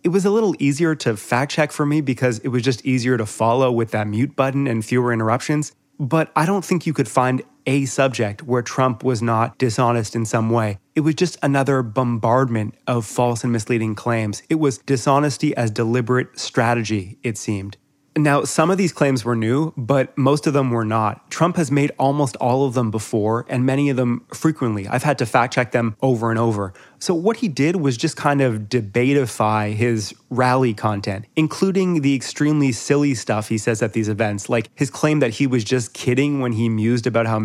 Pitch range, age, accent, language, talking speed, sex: 115-140 Hz, 30-49, American, English, 205 wpm, male